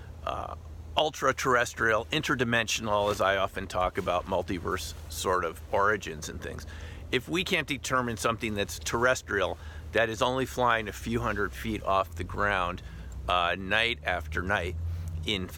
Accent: American